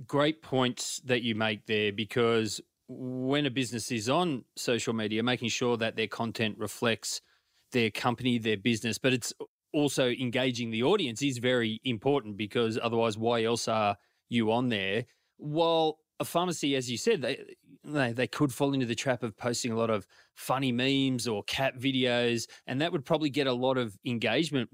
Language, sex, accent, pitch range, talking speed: English, male, Australian, 115-140 Hz, 175 wpm